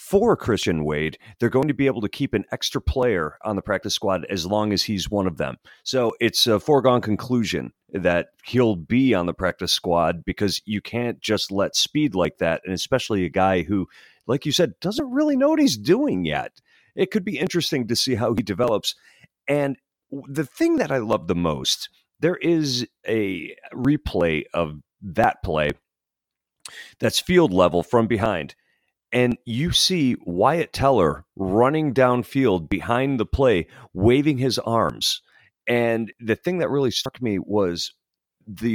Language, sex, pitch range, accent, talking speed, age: English, male, 100-145 Hz, American, 170 wpm, 40-59